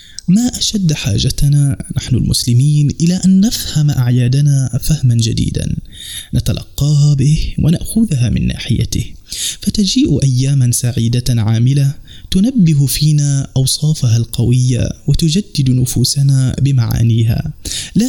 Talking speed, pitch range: 95 wpm, 120-155 Hz